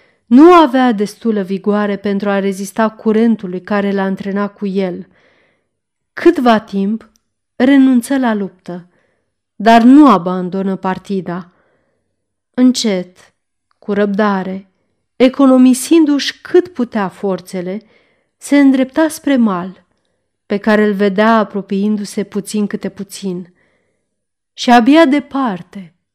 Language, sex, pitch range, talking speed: Romanian, female, 195-255 Hz, 100 wpm